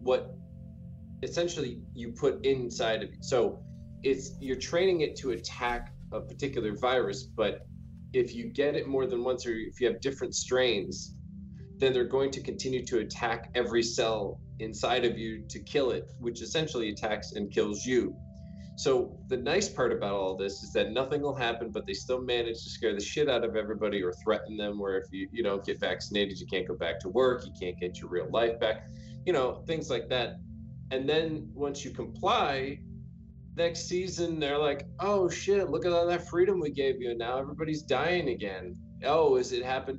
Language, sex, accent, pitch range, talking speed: English, male, American, 115-160 Hz, 195 wpm